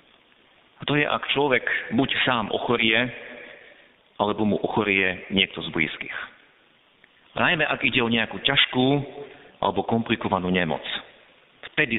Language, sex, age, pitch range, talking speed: Slovak, male, 50-69, 110-155 Hz, 120 wpm